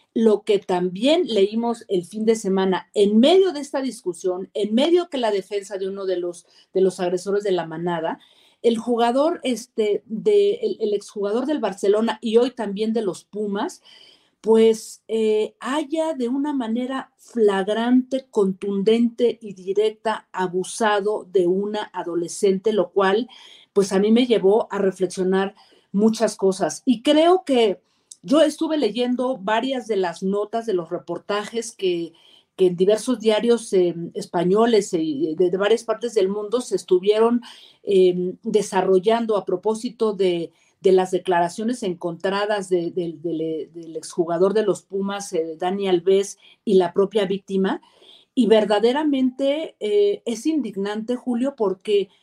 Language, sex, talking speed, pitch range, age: Spanish, female, 150 wpm, 190-245 Hz, 40-59